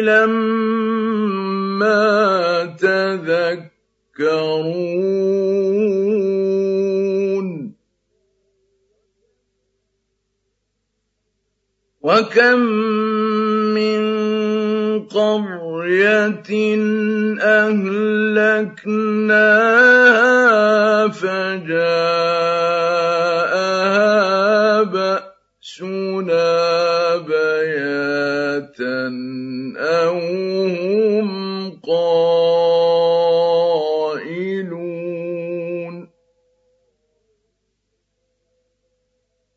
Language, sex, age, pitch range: Arabic, male, 50-69, 170-215 Hz